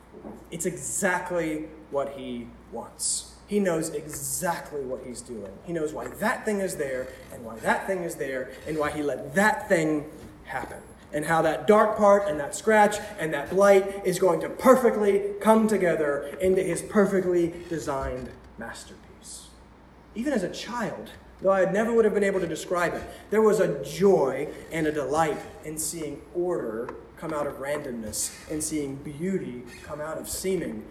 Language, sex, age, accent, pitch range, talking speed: English, male, 20-39, American, 155-210 Hz, 170 wpm